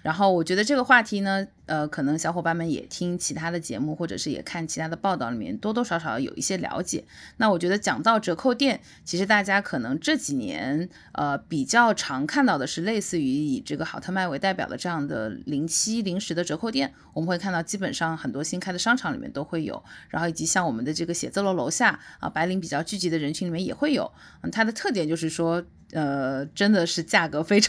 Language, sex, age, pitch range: English, female, 20-39, 165-225 Hz